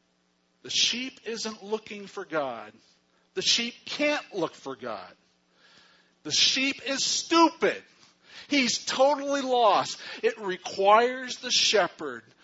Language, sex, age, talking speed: English, male, 50-69, 110 wpm